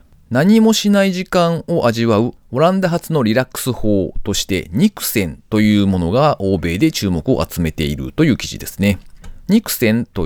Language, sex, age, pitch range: Japanese, male, 40-59, 95-155 Hz